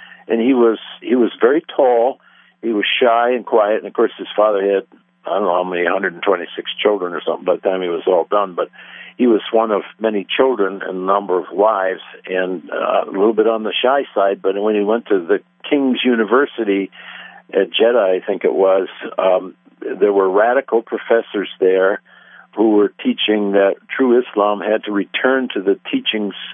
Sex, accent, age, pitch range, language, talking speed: male, American, 60-79, 95-125 Hz, English, 195 wpm